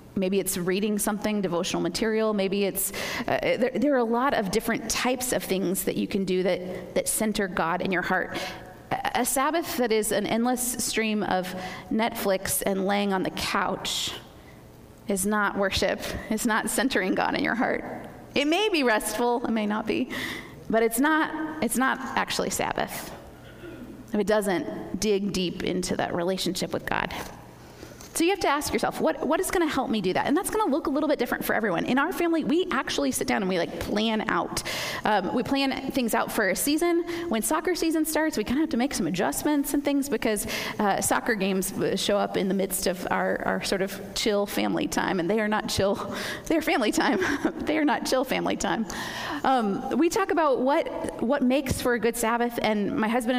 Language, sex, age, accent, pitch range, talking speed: English, female, 30-49, American, 200-275 Hz, 205 wpm